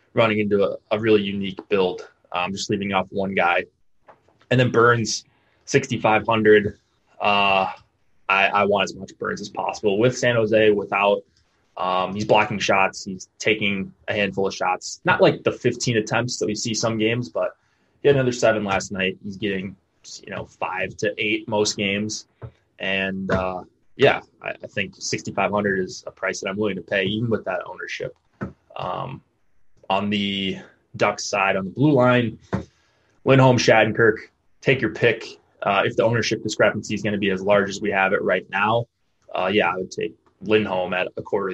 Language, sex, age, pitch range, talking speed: English, male, 20-39, 95-115 Hz, 180 wpm